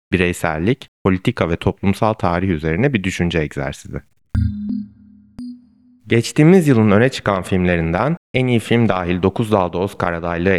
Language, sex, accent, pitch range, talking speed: Turkish, male, native, 85-115 Hz, 125 wpm